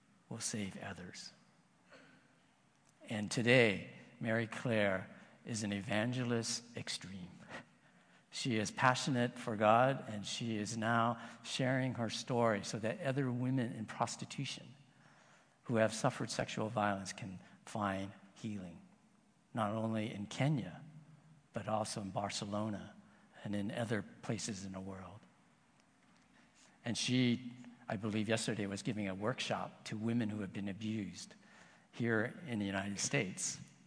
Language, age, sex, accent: English, 60-79, male, American